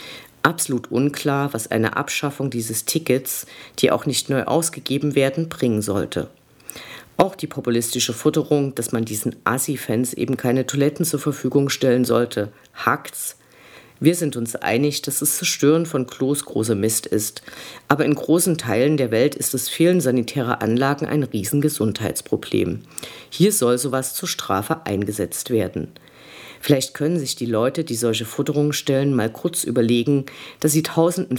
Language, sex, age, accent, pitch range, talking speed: German, female, 50-69, German, 120-150 Hz, 150 wpm